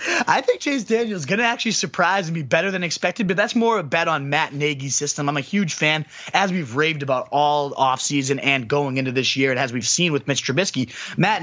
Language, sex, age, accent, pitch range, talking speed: English, male, 20-39, American, 135-170 Hz, 240 wpm